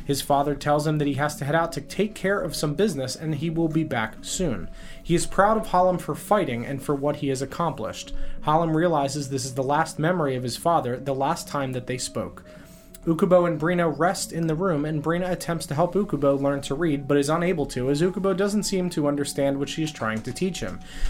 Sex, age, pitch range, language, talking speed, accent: male, 30-49, 140-175 Hz, English, 240 wpm, American